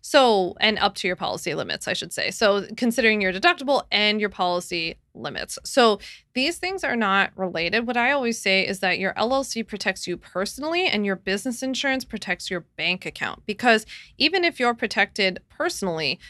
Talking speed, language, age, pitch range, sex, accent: 180 wpm, English, 20-39, 180-220 Hz, female, American